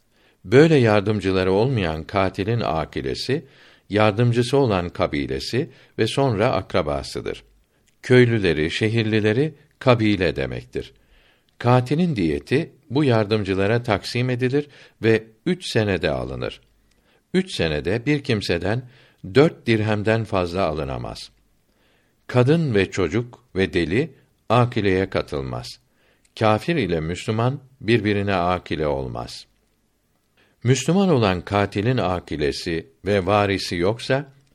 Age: 60-79